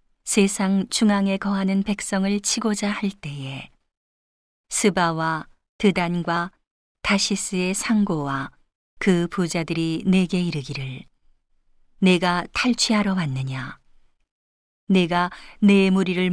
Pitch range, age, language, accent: 165-195 Hz, 40-59, Korean, native